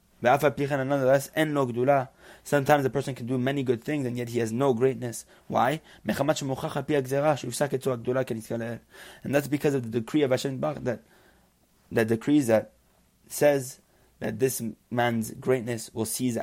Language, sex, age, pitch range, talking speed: English, male, 30-49, 115-140 Hz, 125 wpm